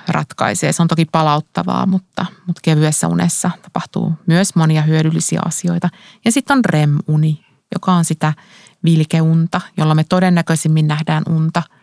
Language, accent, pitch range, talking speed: Finnish, native, 160-190 Hz, 135 wpm